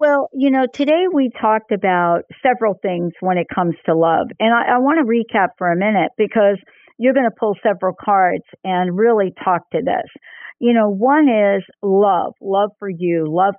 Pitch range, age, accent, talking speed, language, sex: 175-230 Hz, 50-69, American, 190 wpm, English, female